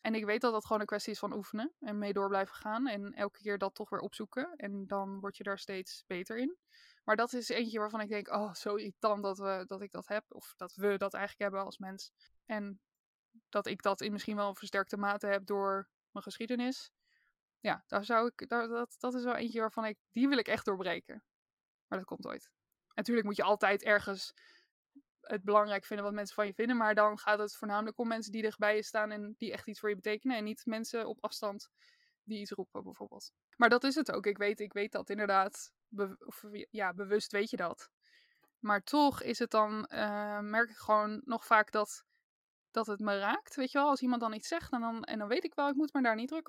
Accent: Dutch